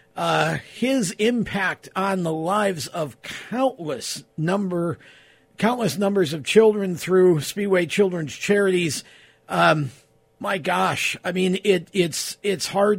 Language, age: English, 50-69